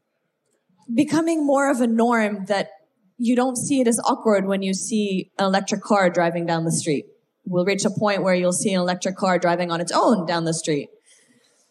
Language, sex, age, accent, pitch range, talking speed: English, female, 20-39, American, 195-265 Hz, 200 wpm